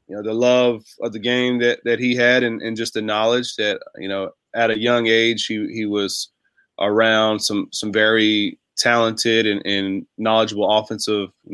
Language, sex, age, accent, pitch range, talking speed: English, male, 20-39, American, 105-120 Hz, 180 wpm